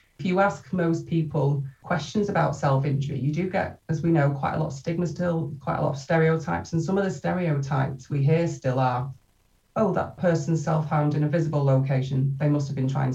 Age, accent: 30-49, British